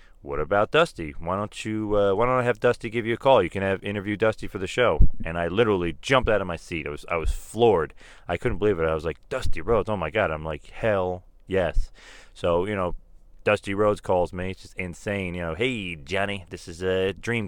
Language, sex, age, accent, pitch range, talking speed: English, male, 30-49, American, 85-105 Hz, 245 wpm